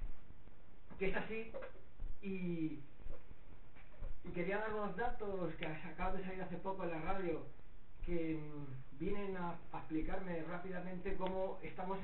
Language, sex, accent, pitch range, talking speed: Spanish, male, Spanish, 160-190 Hz, 120 wpm